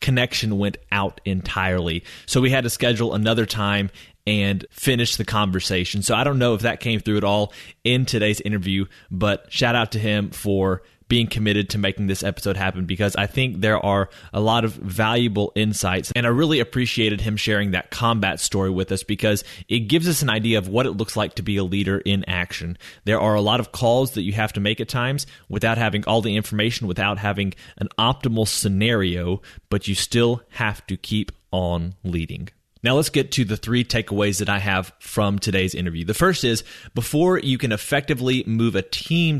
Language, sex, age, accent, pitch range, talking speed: English, male, 30-49, American, 100-120 Hz, 205 wpm